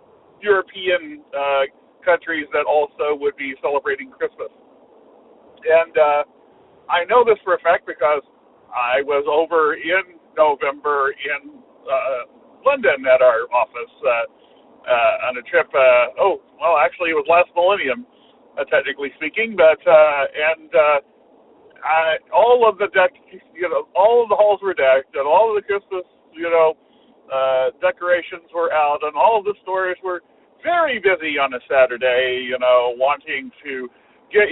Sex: male